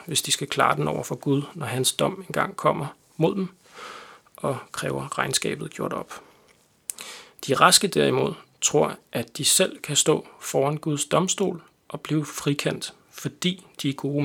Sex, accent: male, native